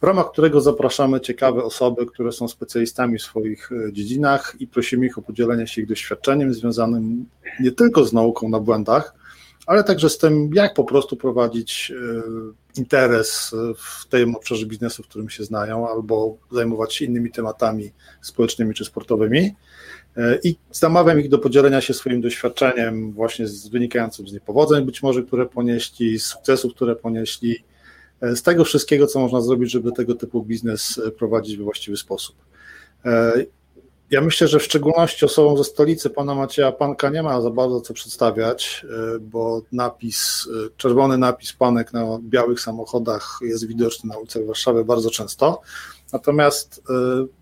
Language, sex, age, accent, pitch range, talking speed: Polish, male, 40-59, native, 115-130 Hz, 150 wpm